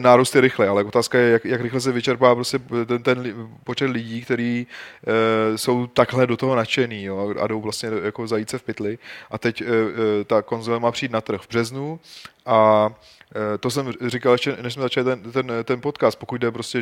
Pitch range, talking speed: 115-130 Hz, 200 wpm